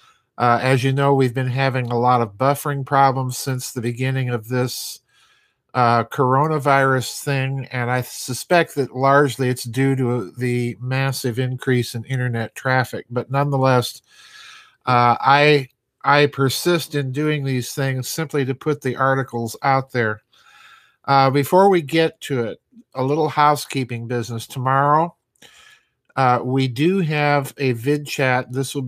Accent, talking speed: American, 150 wpm